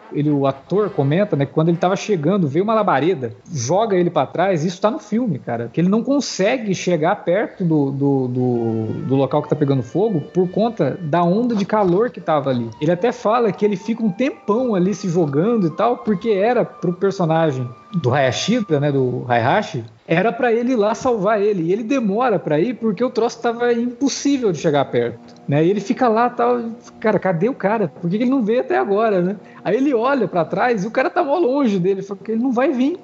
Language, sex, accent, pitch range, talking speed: Portuguese, male, Brazilian, 150-220 Hz, 225 wpm